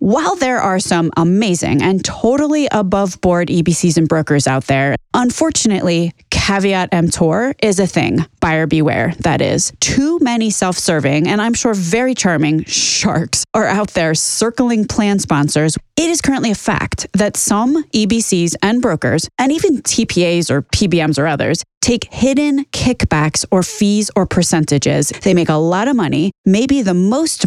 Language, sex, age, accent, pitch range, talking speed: English, female, 20-39, American, 165-230 Hz, 155 wpm